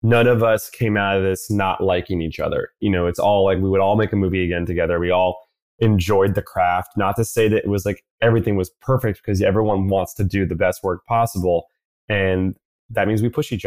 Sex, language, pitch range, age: male, English, 95-115 Hz, 20-39